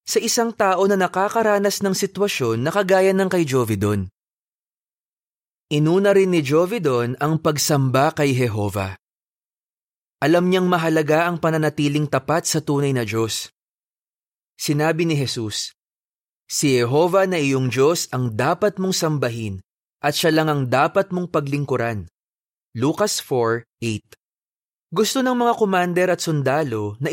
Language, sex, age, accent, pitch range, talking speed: Filipino, male, 20-39, native, 130-180 Hz, 130 wpm